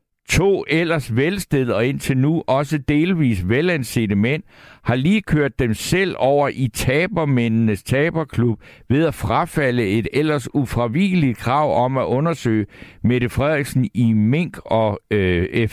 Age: 60-79